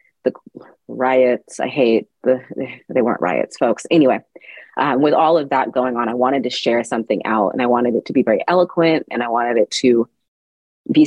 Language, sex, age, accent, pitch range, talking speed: English, female, 30-49, American, 115-135 Hz, 200 wpm